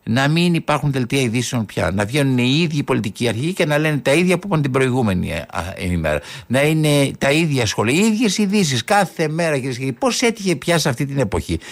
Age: 60-79